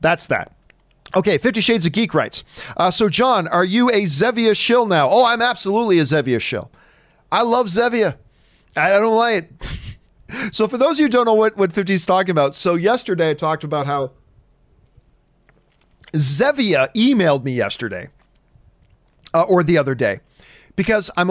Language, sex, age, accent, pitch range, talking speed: English, male, 40-59, American, 155-220 Hz, 170 wpm